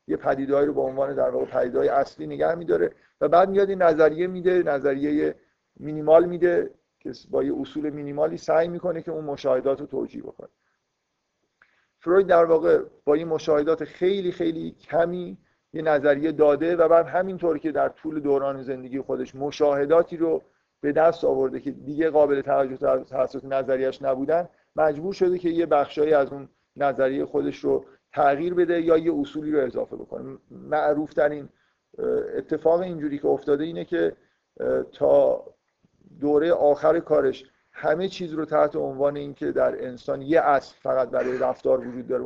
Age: 50-69